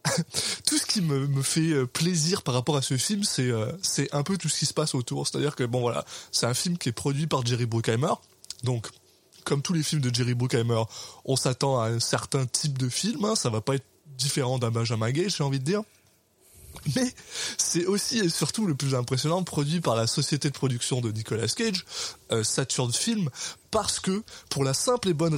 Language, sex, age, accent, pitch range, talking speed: French, male, 20-39, French, 125-170 Hz, 220 wpm